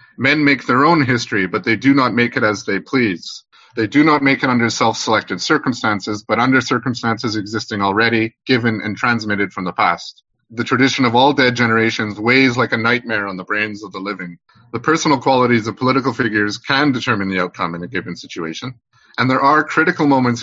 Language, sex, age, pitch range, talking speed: English, male, 30-49, 110-135 Hz, 200 wpm